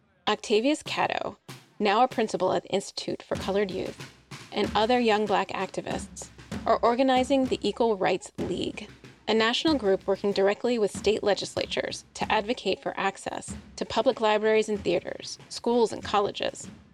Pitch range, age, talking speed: 190-225 Hz, 30-49, 150 wpm